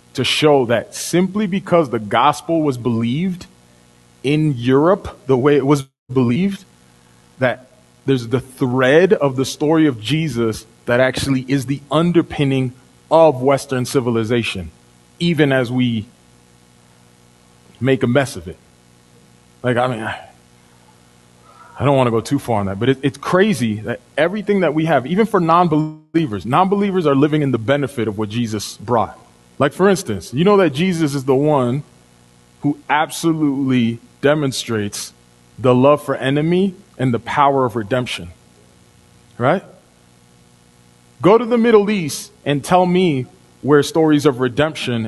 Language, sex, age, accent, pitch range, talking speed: English, male, 30-49, American, 100-155 Hz, 145 wpm